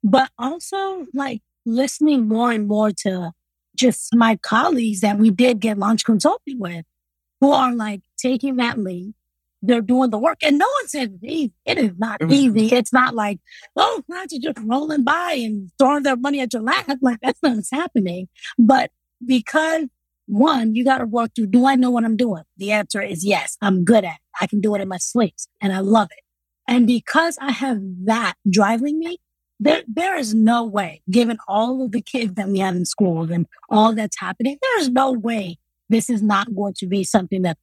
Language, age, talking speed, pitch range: English, 20-39, 205 wpm, 200-265 Hz